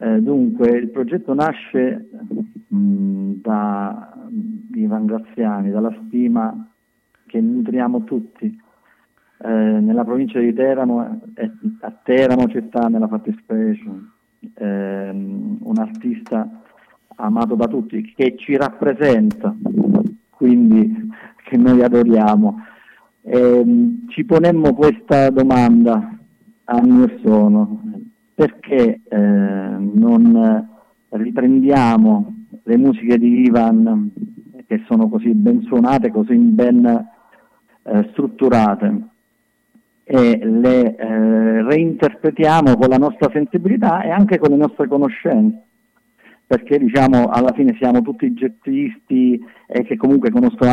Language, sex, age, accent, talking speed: Italian, male, 40-59, native, 105 wpm